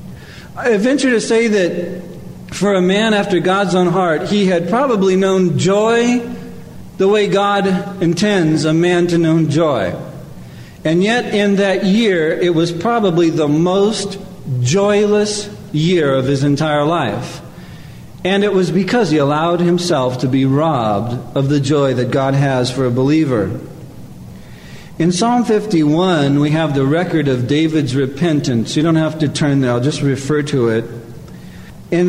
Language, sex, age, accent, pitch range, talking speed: English, male, 50-69, American, 150-200 Hz, 155 wpm